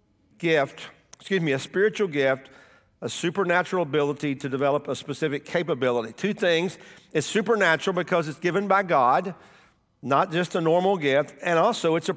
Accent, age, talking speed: American, 50-69, 160 wpm